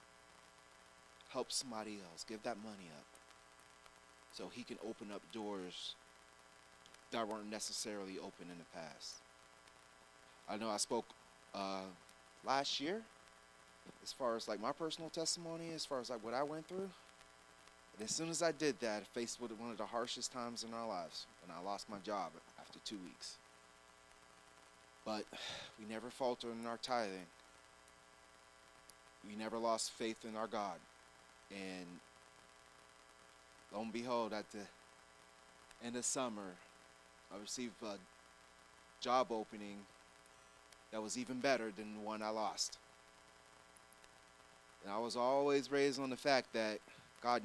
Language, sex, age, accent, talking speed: English, male, 30-49, American, 145 wpm